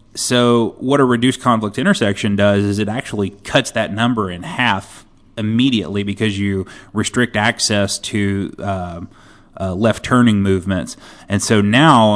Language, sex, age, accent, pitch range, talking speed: English, male, 30-49, American, 100-120 Hz, 135 wpm